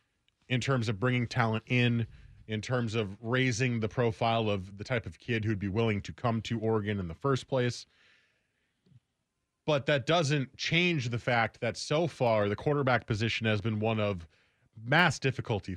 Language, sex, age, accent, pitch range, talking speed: English, male, 30-49, American, 105-130 Hz, 175 wpm